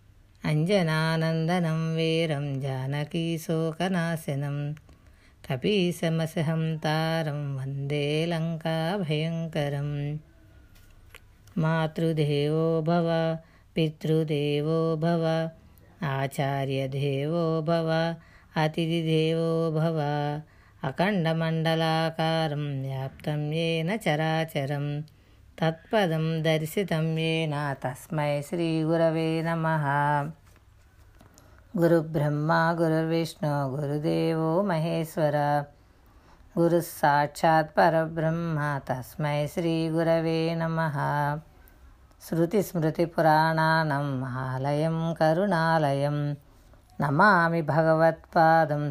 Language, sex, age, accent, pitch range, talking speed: Telugu, female, 20-39, native, 145-165 Hz, 40 wpm